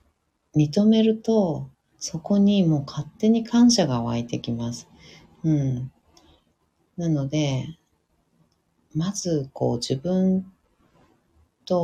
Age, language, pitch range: 40-59, Japanese, 120-165 Hz